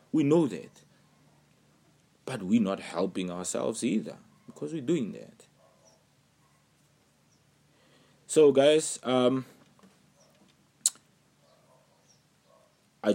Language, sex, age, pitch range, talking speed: English, male, 20-39, 90-145 Hz, 80 wpm